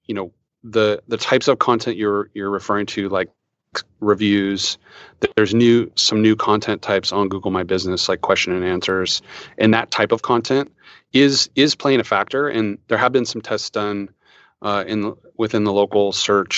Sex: male